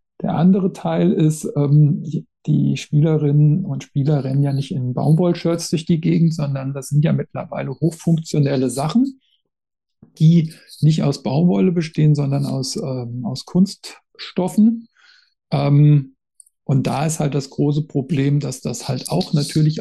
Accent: German